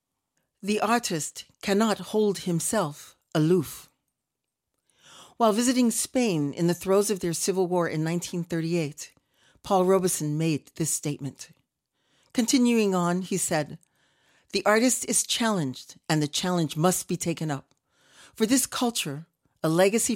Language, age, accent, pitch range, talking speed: English, 40-59, American, 160-220 Hz, 130 wpm